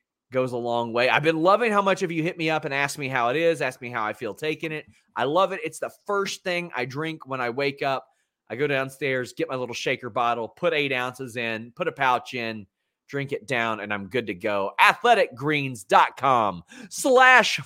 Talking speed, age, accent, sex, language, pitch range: 225 wpm, 30-49, American, male, English, 125-175 Hz